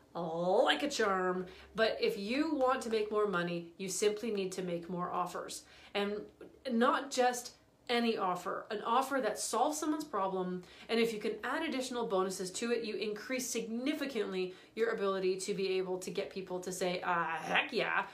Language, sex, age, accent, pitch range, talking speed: English, female, 30-49, American, 185-235 Hz, 180 wpm